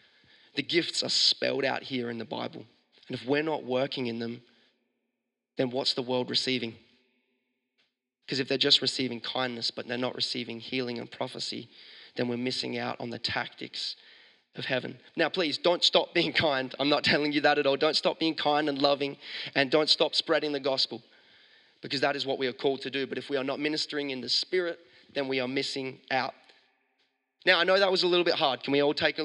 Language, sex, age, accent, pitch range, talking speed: English, male, 20-39, Australian, 125-155 Hz, 215 wpm